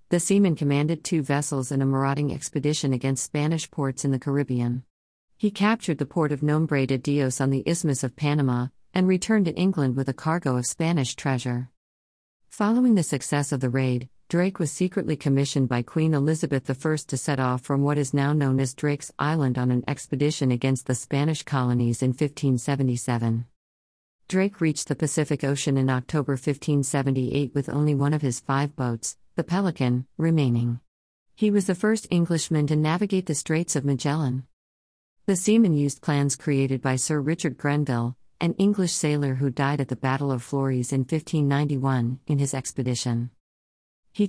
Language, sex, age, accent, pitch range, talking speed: English, female, 50-69, American, 130-155 Hz, 170 wpm